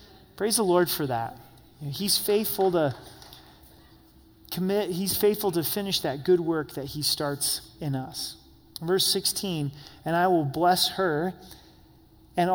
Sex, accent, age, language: male, American, 30-49, English